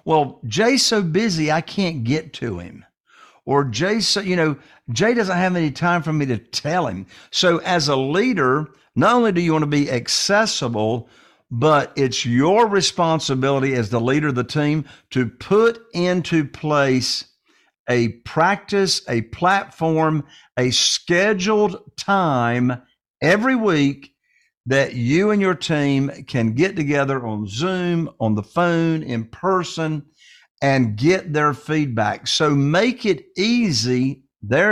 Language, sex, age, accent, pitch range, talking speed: English, male, 50-69, American, 135-185 Hz, 145 wpm